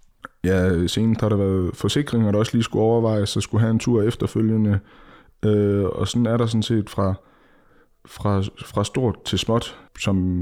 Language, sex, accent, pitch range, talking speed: Danish, male, native, 95-115 Hz, 180 wpm